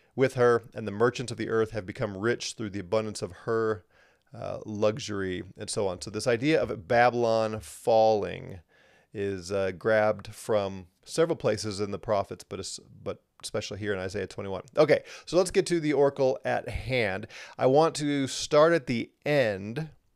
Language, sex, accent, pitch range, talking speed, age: English, male, American, 105-135 Hz, 180 wpm, 30-49